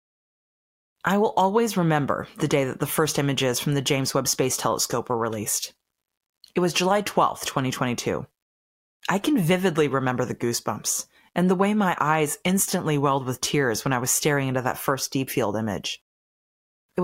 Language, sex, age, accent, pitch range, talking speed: English, female, 30-49, American, 135-170 Hz, 175 wpm